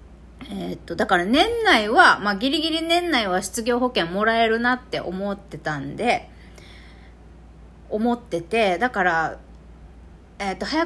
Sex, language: female, Japanese